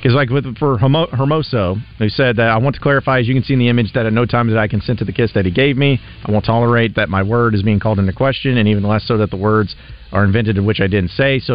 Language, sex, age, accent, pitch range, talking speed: English, male, 40-59, American, 100-135 Hz, 300 wpm